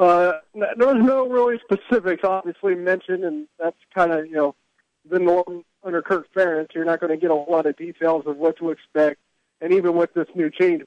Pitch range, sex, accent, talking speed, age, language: 155-190 Hz, male, American, 210 wpm, 40-59, English